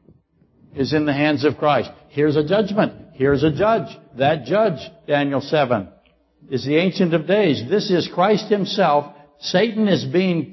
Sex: male